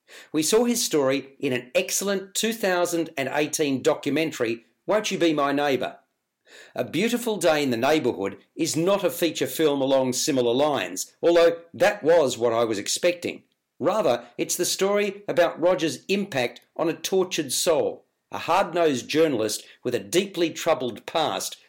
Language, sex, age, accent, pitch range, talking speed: English, male, 50-69, Australian, 145-185 Hz, 150 wpm